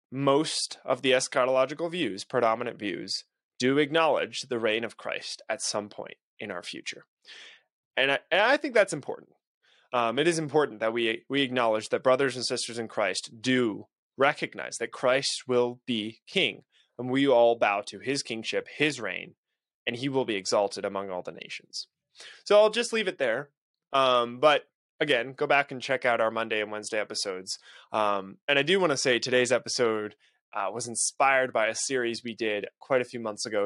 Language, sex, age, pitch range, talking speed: English, male, 20-39, 115-140 Hz, 185 wpm